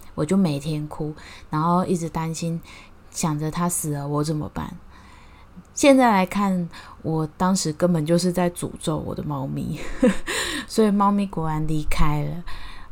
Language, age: Chinese, 20-39